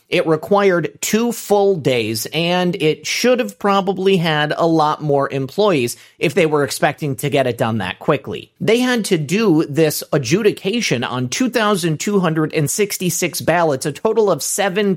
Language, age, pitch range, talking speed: English, 30-49, 150-200 Hz, 150 wpm